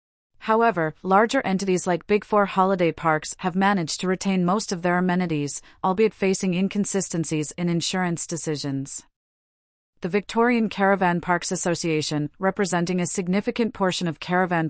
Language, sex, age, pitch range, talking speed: English, female, 30-49, 165-200 Hz, 135 wpm